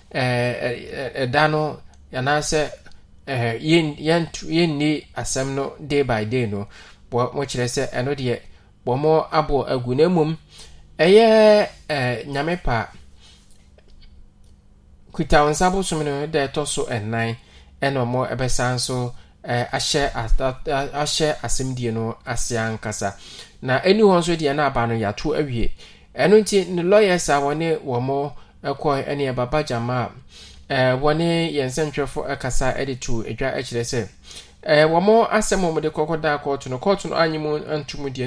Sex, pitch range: male, 120-155 Hz